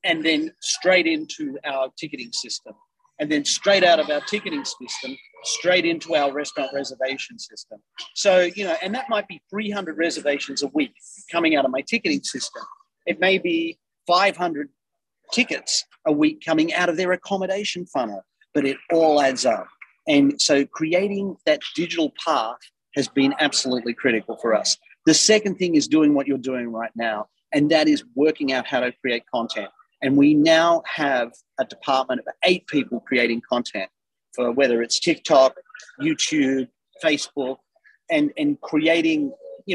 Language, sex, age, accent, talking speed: English, male, 40-59, Australian, 165 wpm